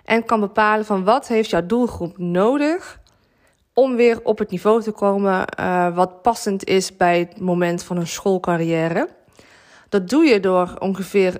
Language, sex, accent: Dutch, female, Dutch